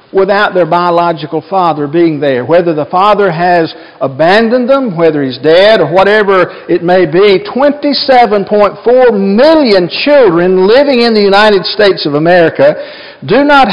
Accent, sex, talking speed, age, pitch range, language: American, male, 140 wpm, 50-69, 180-235 Hz, English